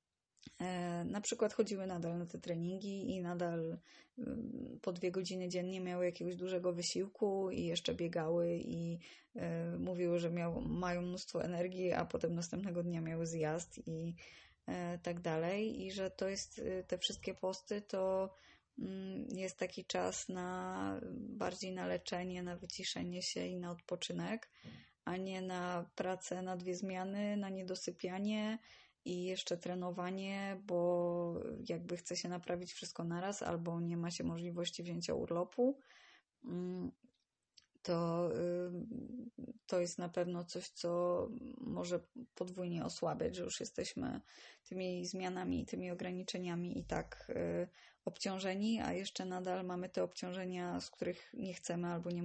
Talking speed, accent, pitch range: 135 wpm, native, 175-190 Hz